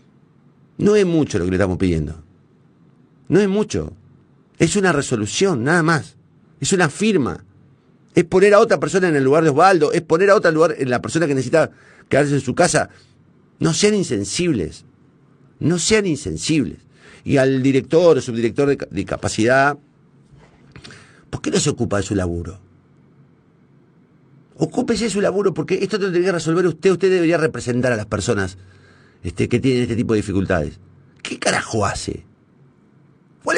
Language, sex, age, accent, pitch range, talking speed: Spanish, male, 50-69, Argentinian, 115-175 Hz, 165 wpm